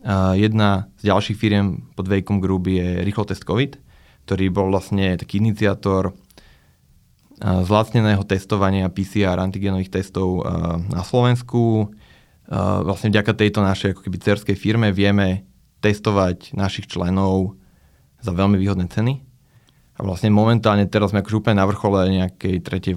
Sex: male